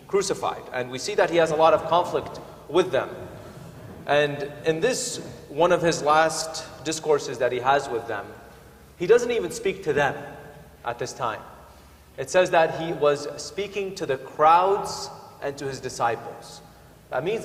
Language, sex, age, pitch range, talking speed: English, male, 30-49, 135-200 Hz, 170 wpm